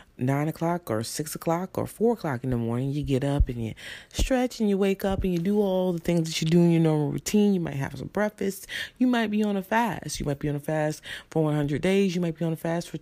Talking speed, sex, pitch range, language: 280 wpm, female, 135-195 Hz, English